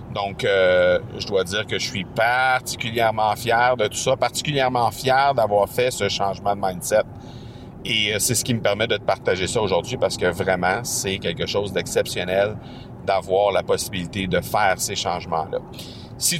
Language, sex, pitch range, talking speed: French, male, 105-130 Hz, 175 wpm